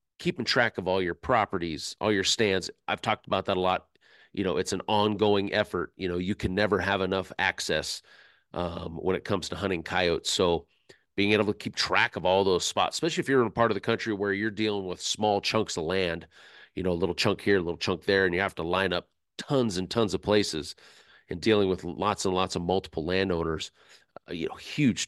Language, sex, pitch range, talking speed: English, male, 90-105 Hz, 230 wpm